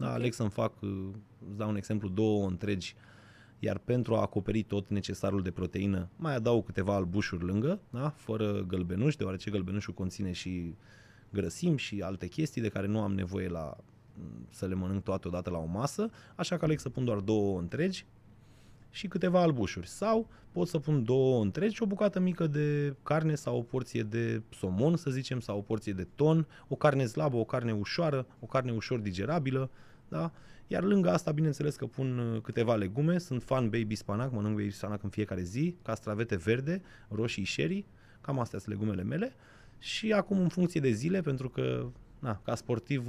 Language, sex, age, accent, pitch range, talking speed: Romanian, male, 30-49, native, 100-130 Hz, 185 wpm